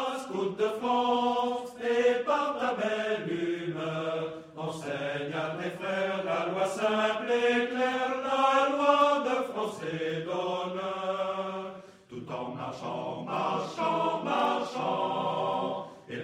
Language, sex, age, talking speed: French, male, 60-79, 105 wpm